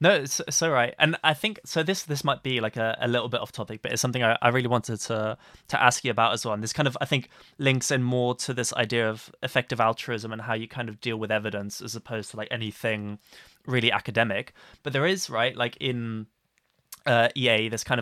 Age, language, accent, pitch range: 20-39, English, British, 110-135 Hz